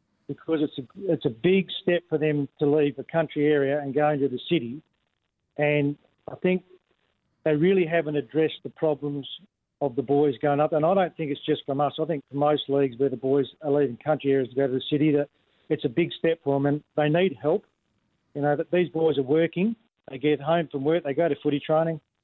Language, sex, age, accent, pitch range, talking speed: English, male, 40-59, Australian, 140-160 Hz, 230 wpm